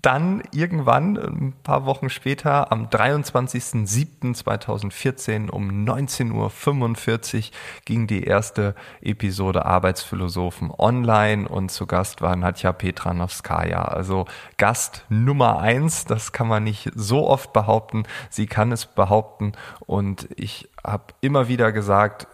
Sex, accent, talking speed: male, German, 120 wpm